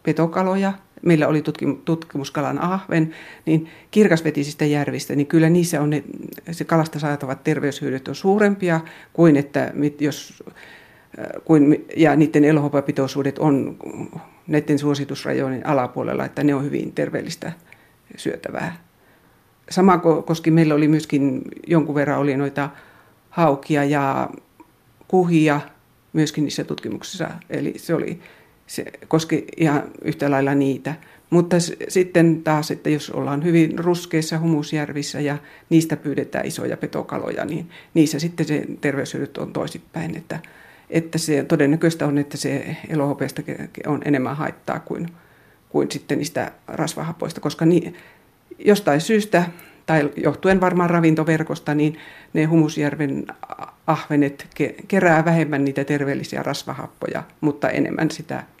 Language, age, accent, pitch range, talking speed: Finnish, 60-79, native, 145-165 Hz, 120 wpm